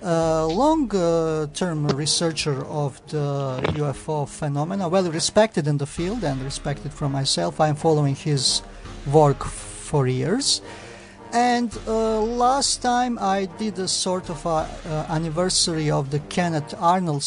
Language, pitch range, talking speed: English, 145-185 Hz, 140 wpm